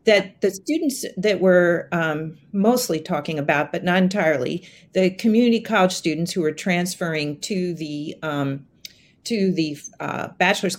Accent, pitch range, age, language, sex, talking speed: American, 175-225 Hz, 50-69, English, female, 145 wpm